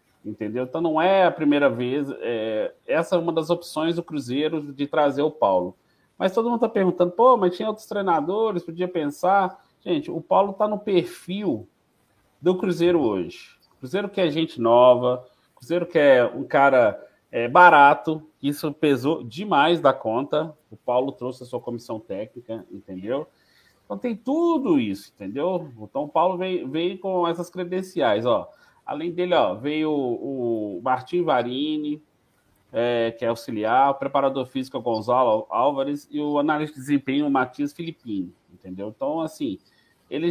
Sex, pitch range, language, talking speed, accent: male, 130-180 Hz, Portuguese, 160 wpm, Brazilian